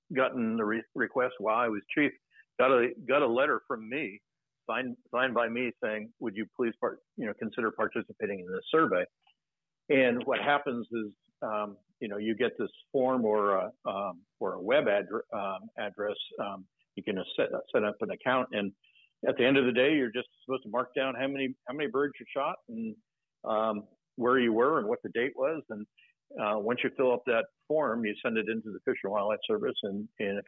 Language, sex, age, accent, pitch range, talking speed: English, male, 60-79, American, 110-140 Hz, 215 wpm